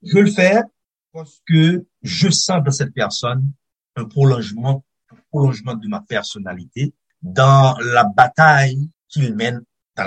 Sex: male